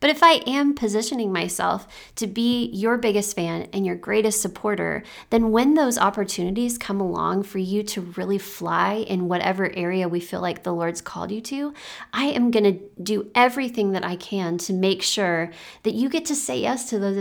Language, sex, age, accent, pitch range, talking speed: English, female, 30-49, American, 180-225 Hz, 200 wpm